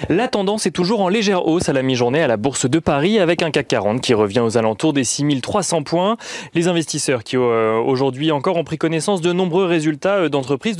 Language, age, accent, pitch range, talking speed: French, 30-49, French, 130-170 Hz, 215 wpm